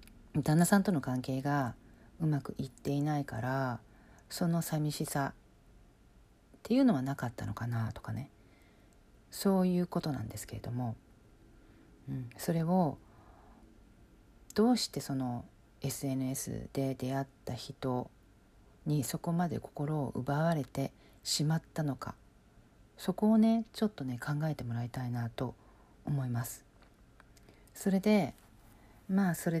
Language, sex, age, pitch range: Japanese, female, 40-59, 115-155 Hz